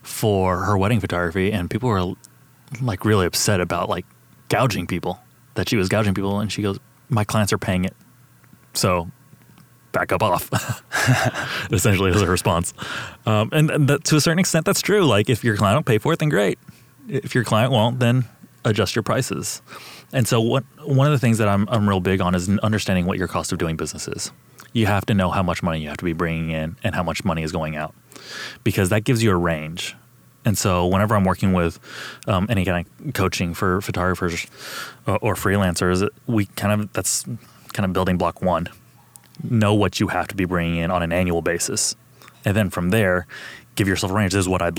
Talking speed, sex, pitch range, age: 215 wpm, male, 90-125 Hz, 20-39